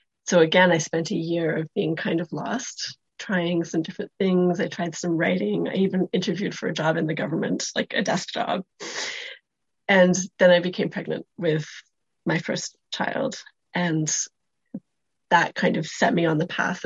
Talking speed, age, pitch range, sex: 180 wpm, 30-49, 165-195 Hz, female